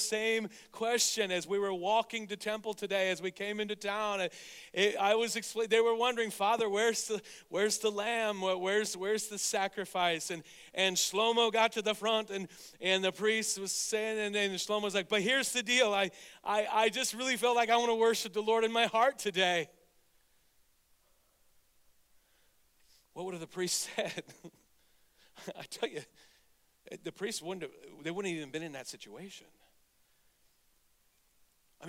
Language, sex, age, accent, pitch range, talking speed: English, male, 40-59, American, 175-220 Hz, 175 wpm